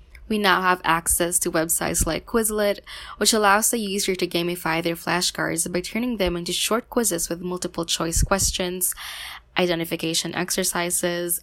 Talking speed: 145 wpm